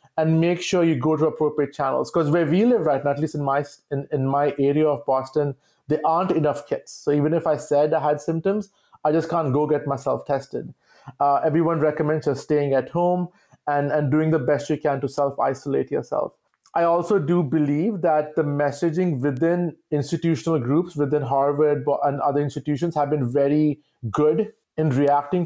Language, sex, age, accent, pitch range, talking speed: English, male, 30-49, Indian, 145-165 Hz, 185 wpm